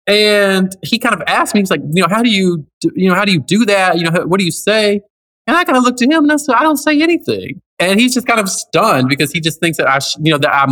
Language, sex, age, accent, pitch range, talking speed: English, male, 20-39, American, 125-185 Hz, 325 wpm